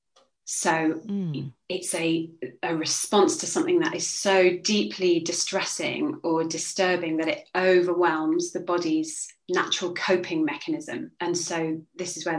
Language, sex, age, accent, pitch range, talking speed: English, female, 30-49, British, 165-195 Hz, 130 wpm